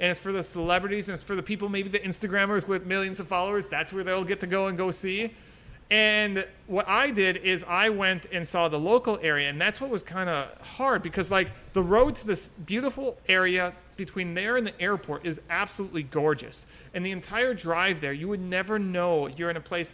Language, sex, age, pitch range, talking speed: English, male, 40-59, 155-195 Hz, 225 wpm